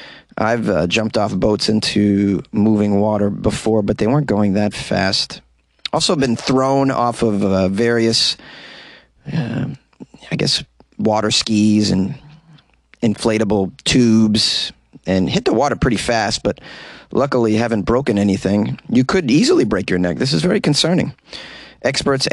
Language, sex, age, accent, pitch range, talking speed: English, male, 30-49, American, 100-115 Hz, 140 wpm